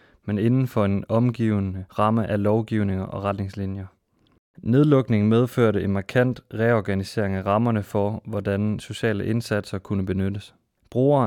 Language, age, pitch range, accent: Danish, 20-39, 100-115 Hz, native